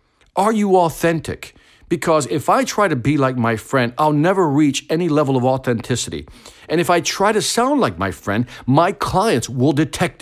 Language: English